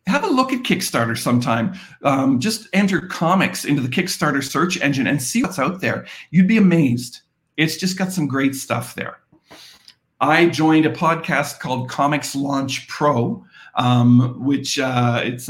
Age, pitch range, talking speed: 50-69, 125-150 Hz, 165 wpm